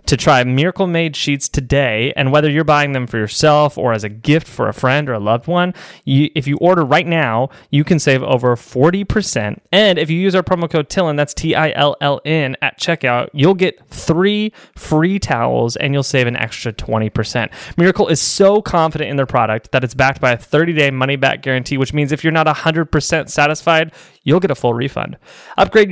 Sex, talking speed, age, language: male, 210 wpm, 20-39, English